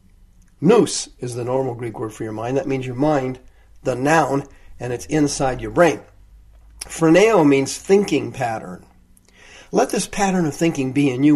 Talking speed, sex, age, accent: 170 wpm, male, 50-69, American